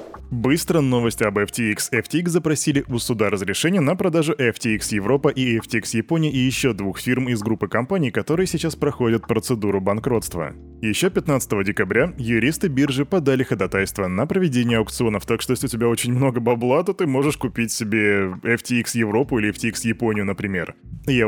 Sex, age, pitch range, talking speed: male, 20-39, 105-140 Hz, 165 wpm